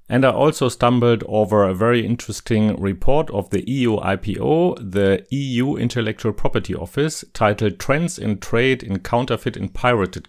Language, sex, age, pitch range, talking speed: English, male, 40-59, 100-125 Hz, 150 wpm